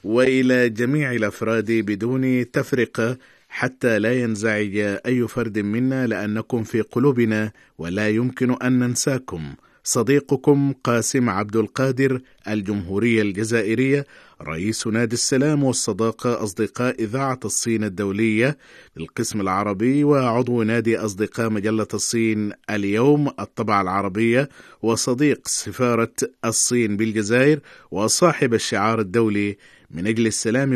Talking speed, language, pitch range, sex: 100 wpm, Arabic, 110-130 Hz, male